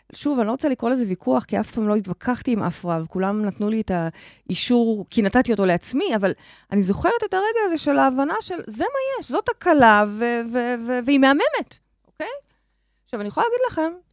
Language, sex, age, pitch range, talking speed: Hebrew, female, 30-49, 195-310 Hz, 205 wpm